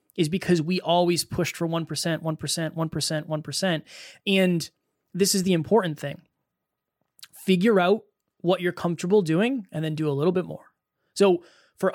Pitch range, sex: 160-195 Hz, male